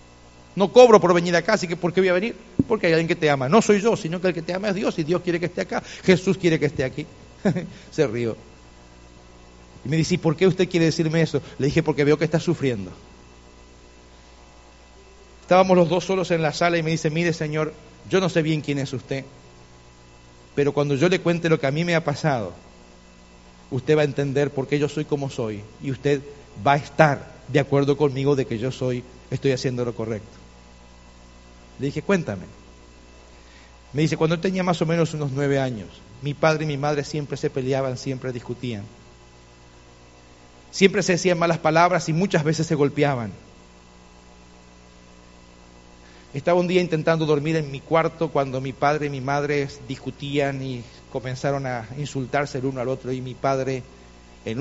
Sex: male